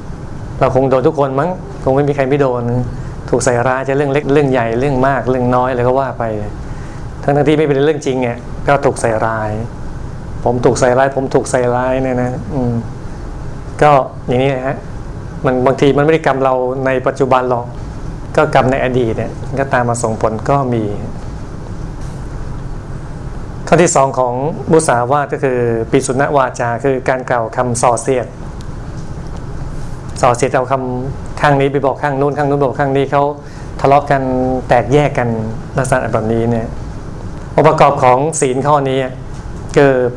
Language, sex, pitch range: Thai, male, 120-140 Hz